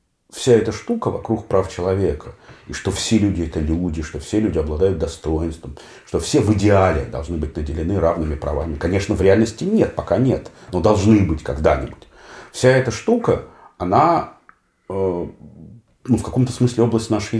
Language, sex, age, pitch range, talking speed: Russian, male, 40-59, 80-110 Hz, 160 wpm